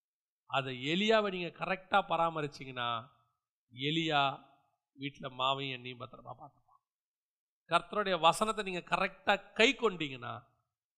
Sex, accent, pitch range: male, native, 135-195 Hz